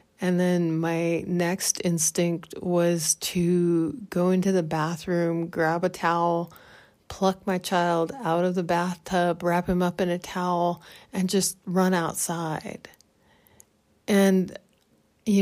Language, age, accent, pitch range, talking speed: English, 30-49, American, 170-190 Hz, 130 wpm